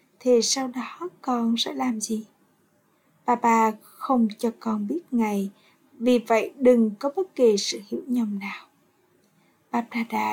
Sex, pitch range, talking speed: female, 225-270 Hz, 150 wpm